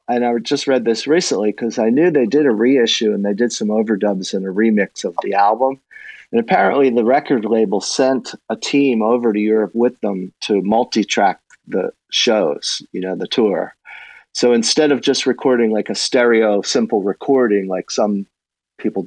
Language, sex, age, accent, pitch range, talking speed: English, male, 40-59, American, 100-125 Hz, 185 wpm